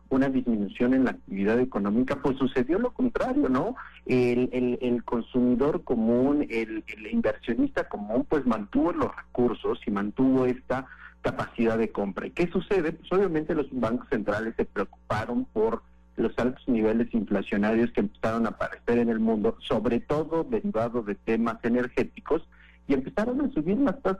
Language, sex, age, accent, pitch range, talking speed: Spanish, male, 50-69, Mexican, 115-165 Hz, 160 wpm